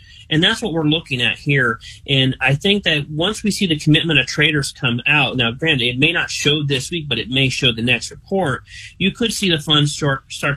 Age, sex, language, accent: 30-49, male, English, American